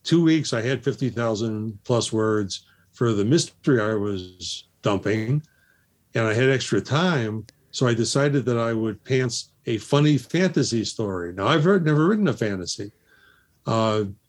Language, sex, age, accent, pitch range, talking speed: English, male, 60-79, American, 110-140 Hz, 145 wpm